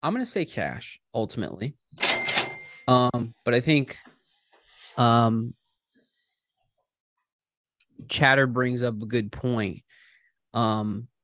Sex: male